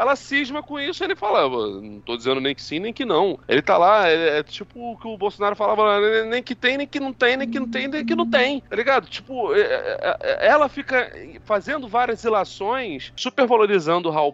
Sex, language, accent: male, Portuguese, Brazilian